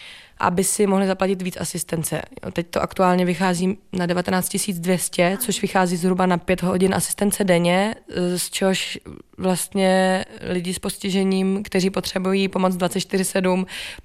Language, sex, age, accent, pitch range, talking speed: Czech, female, 20-39, native, 180-195 Hz, 130 wpm